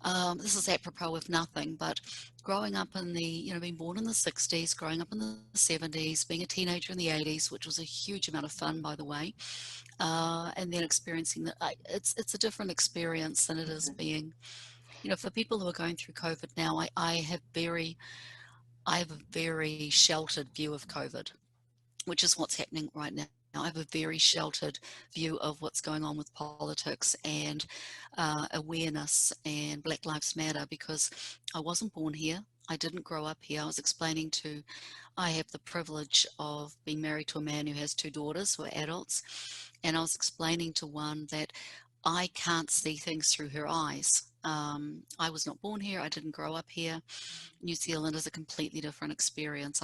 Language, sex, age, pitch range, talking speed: English, female, 40-59, 150-170 Hz, 195 wpm